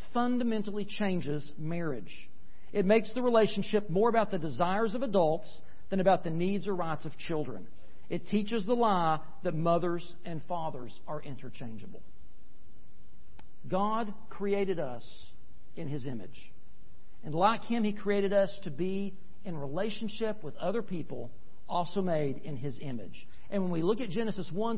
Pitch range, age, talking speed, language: 165-220 Hz, 50-69, 150 wpm, English